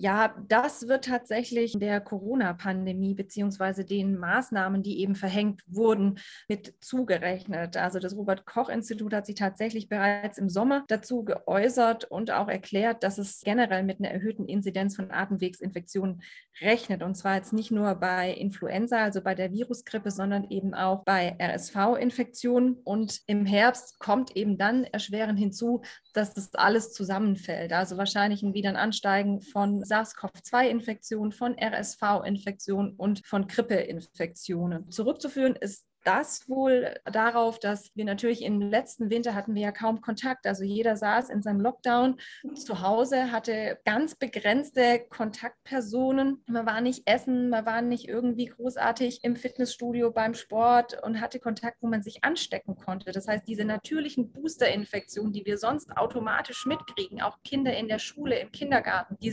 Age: 20-39